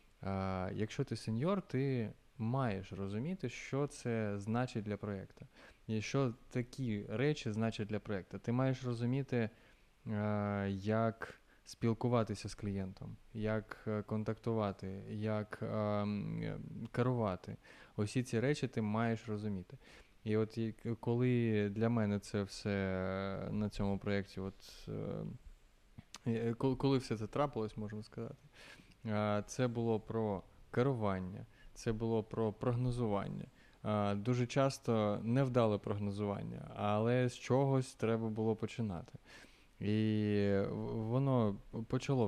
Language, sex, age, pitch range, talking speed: Ukrainian, male, 20-39, 105-125 Hz, 105 wpm